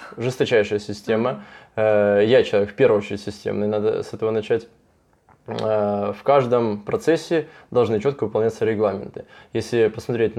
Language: Russian